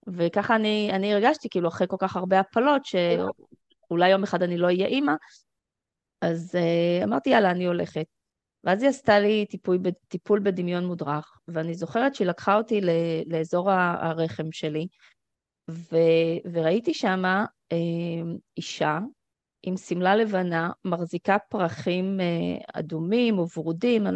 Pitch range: 165-205 Hz